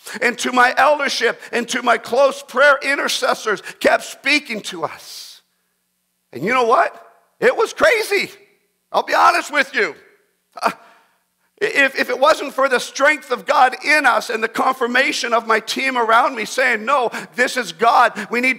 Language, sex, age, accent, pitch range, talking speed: English, male, 50-69, American, 165-255 Hz, 170 wpm